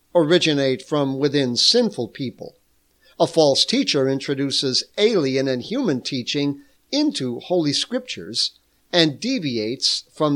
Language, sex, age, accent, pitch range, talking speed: English, male, 50-69, American, 130-165 Hz, 110 wpm